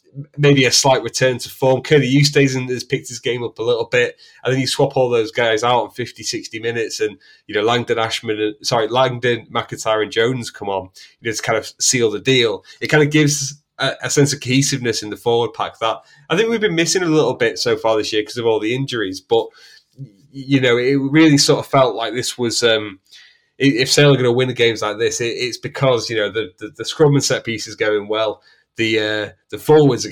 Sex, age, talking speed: male, 20-39, 245 wpm